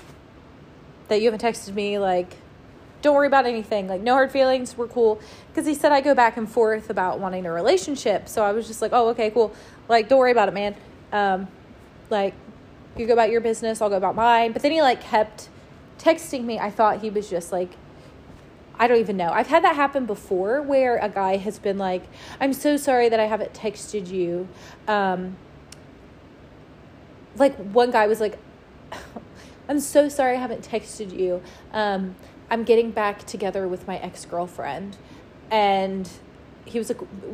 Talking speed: 185 wpm